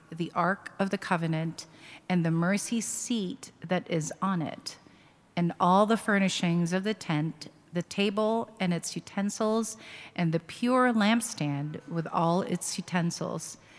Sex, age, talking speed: female, 40-59, 145 wpm